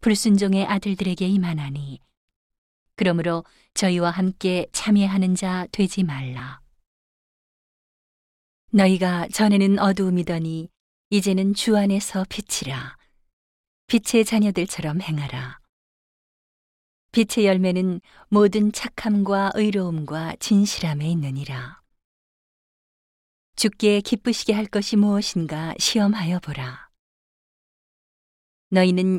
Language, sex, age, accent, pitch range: Korean, female, 40-59, native, 160-205 Hz